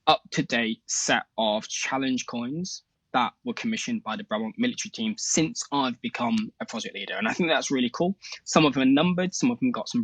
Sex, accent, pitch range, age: male, British, 135-225 Hz, 20-39